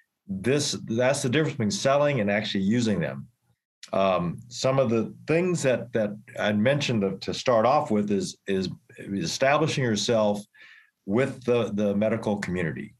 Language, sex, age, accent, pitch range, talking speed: English, male, 50-69, American, 105-125 Hz, 150 wpm